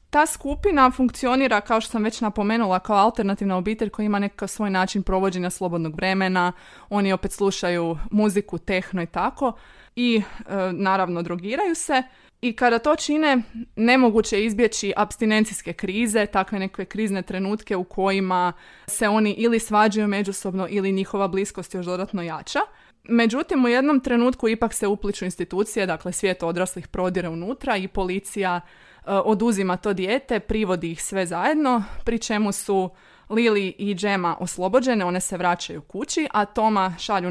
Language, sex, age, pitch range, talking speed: Croatian, female, 20-39, 185-230 Hz, 150 wpm